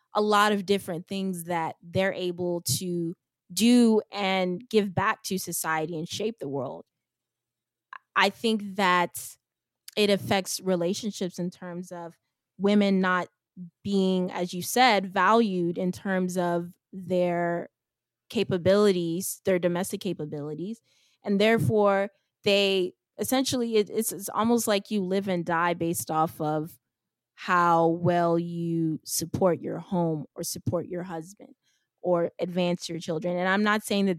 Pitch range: 170-195 Hz